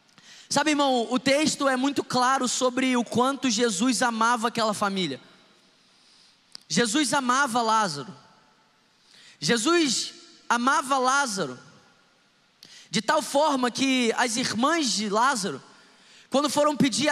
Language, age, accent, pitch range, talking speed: Portuguese, 20-39, Brazilian, 225-280 Hz, 110 wpm